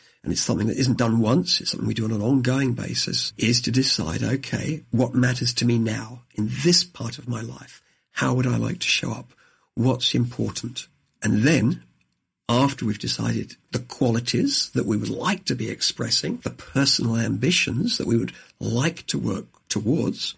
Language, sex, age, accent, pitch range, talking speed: English, male, 50-69, British, 110-130 Hz, 185 wpm